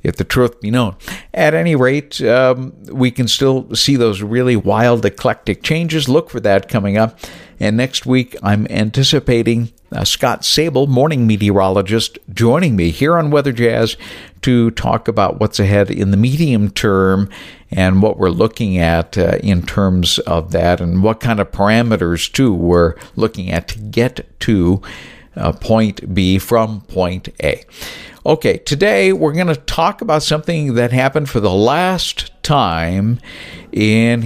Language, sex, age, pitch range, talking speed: English, male, 60-79, 95-135 Hz, 160 wpm